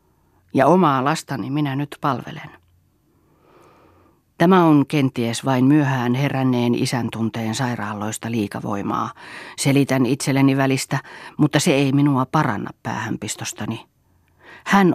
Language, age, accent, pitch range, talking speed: Finnish, 40-59, native, 115-150 Hz, 105 wpm